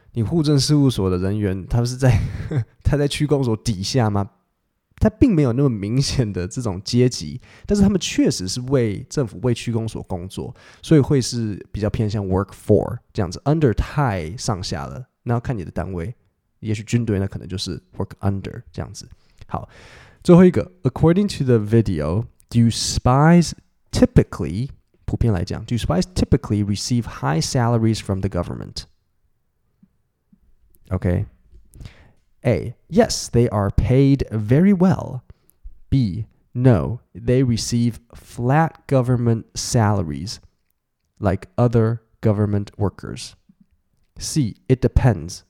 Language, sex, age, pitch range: Chinese, male, 20-39, 100-125 Hz